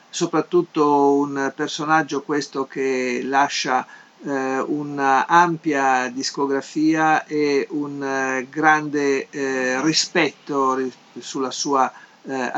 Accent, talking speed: native, 85 wpm